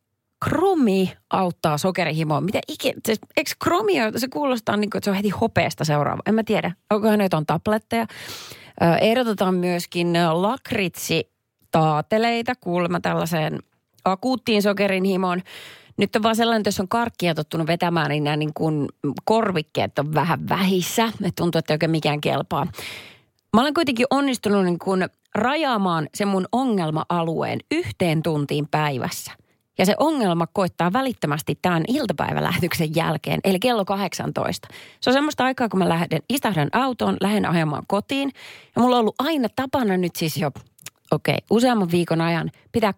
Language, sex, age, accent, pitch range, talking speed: Finnish, female, 30-49, native, 165-230 Hz, 140 wpm